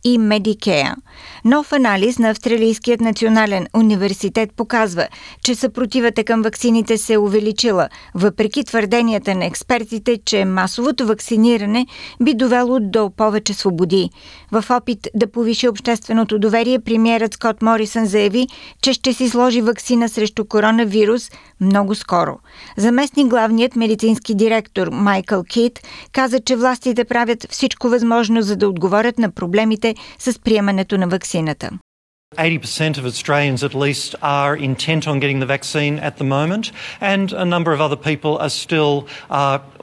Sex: female